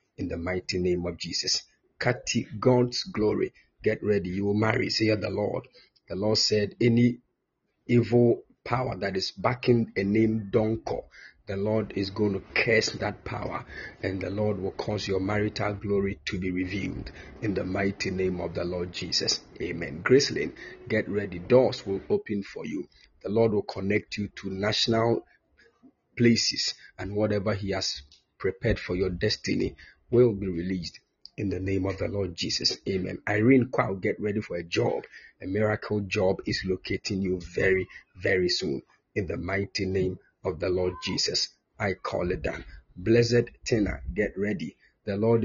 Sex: male